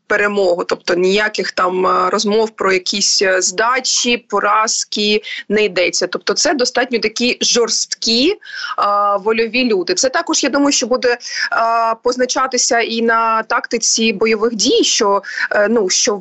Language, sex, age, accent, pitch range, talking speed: Ukrainian, female, 20-39, native, 195-245 Hz, 120 wpm